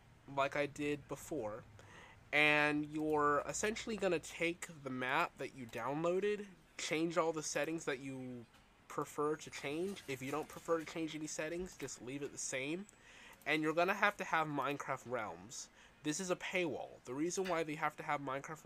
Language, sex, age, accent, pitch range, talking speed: English, male, 20-39, American, 125-160 Hz, 180 wpm